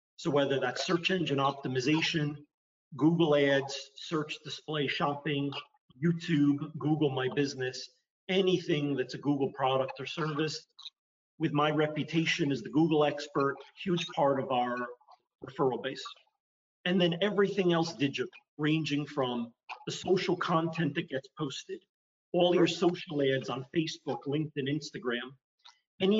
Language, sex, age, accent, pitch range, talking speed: English, male, 40-59, American, 140-170 Hz, 130 wpm